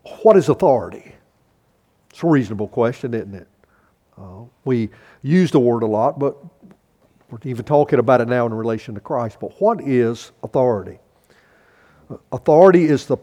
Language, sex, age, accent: English, male, 50-69, American